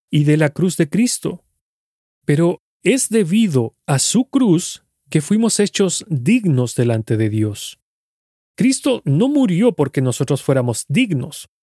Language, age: Spanish, 40-59